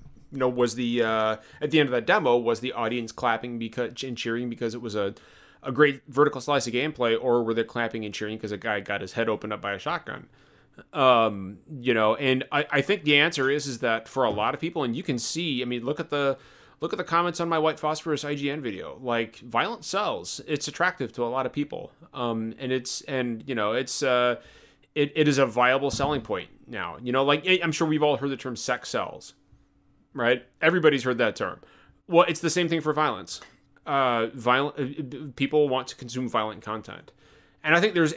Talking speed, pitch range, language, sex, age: 225 wpm, 120-150 Hz, English, male, 30-49